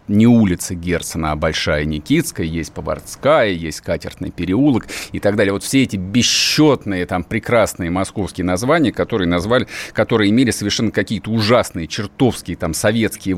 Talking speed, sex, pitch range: 145 wpm, male, 100-140 Hz